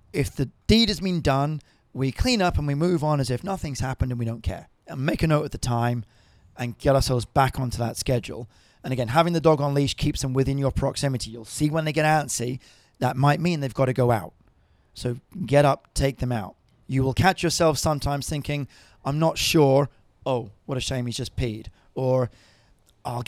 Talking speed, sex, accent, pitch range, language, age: 220 wpm, male, British, 120-155 Hz, English, 30-49